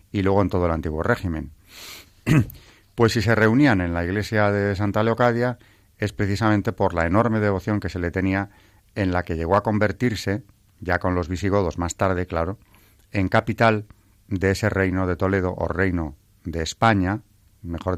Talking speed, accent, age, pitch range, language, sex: 175 wpm, Spanish, 40-59, 90-105 Hz, Spanish, male